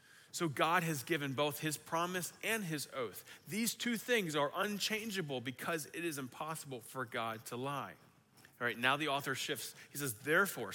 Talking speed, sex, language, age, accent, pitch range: 180 wpm, male, English, 30-49, American, 130-165 Hz